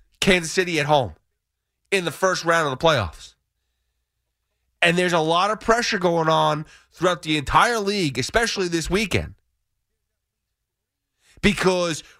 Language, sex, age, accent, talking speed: English, male, 30-49, American, 135 wpm